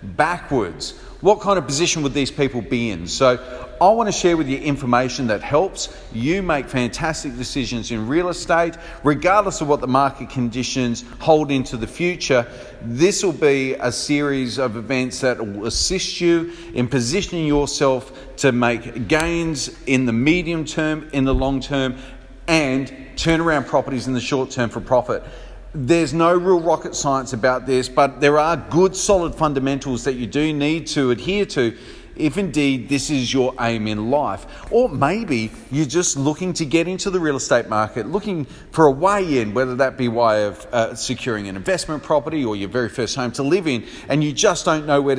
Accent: Australian